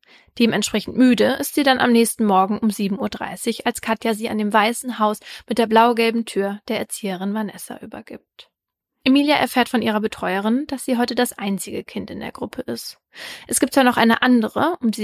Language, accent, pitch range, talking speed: German, German, 205-245 Hz, 200 wpm